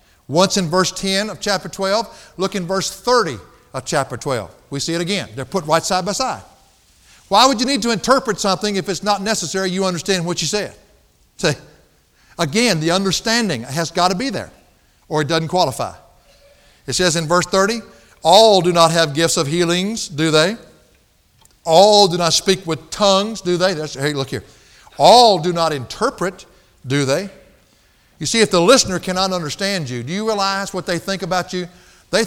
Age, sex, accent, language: 60-79, male, American, English